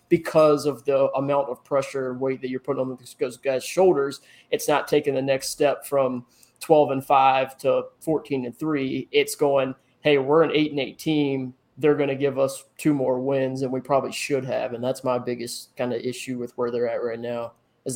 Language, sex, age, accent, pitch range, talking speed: English, male, 20-39, American, 135-150 Hz, 215 wpm